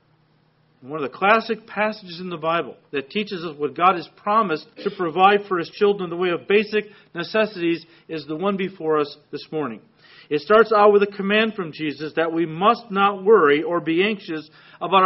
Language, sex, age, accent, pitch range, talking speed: English, male, 40-59, American, 165-215 Hz, 200 wpm